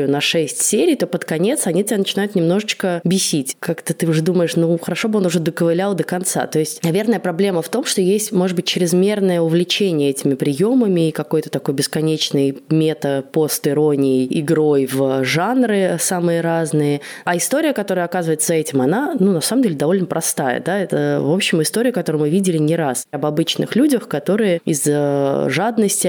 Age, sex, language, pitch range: 20-39, female, Russian, 150-190 Hz